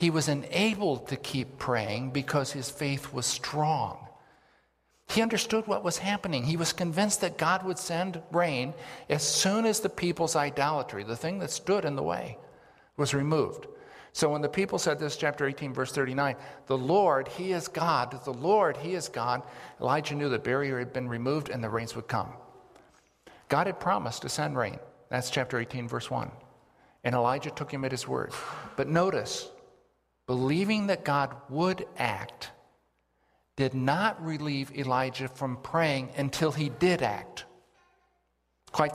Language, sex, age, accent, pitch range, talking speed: English, male, 50-69, American, 120-155 Hz, 165 wpm